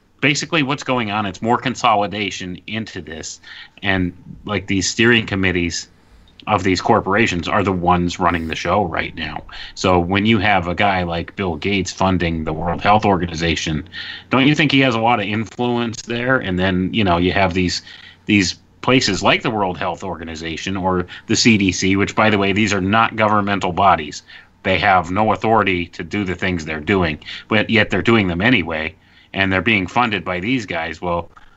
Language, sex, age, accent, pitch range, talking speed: English, male, 30-49, American, 90-110 Hz, 190 wpm